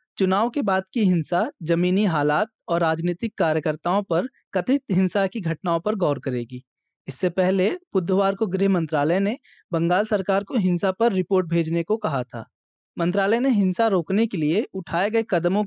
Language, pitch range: Hindi, 170-215 Hz